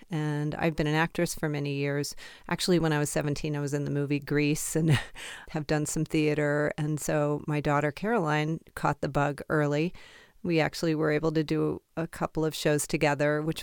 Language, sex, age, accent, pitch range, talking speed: English, female, 40-59, American, 145-170 Hz, 200 wpm